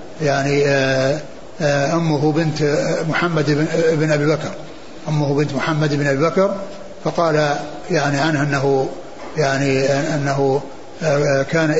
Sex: male